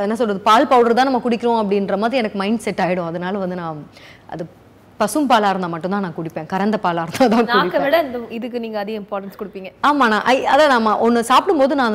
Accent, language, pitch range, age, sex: native, Tamil, 180-245 Hz, 30-49, female